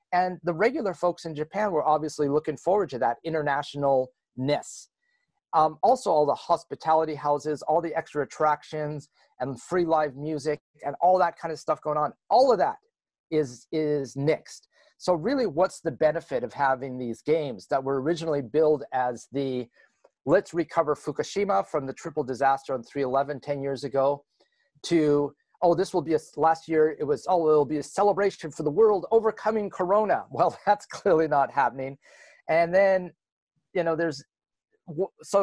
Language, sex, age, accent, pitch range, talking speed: English, male, 40-59, American, 140-180 Hz, 170 wpm